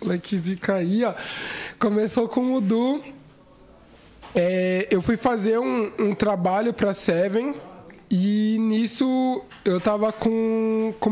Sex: male